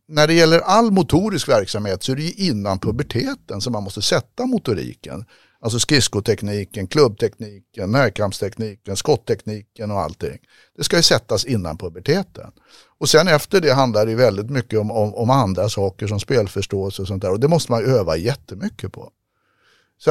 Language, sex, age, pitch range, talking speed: Swedish, male, 60-79, 105-145 Hz, 170 wpm